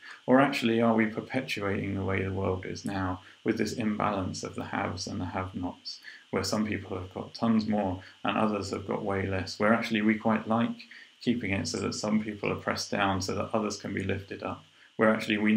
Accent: British